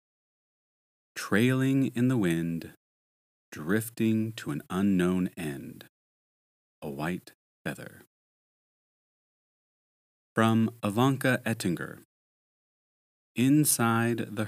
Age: 30-49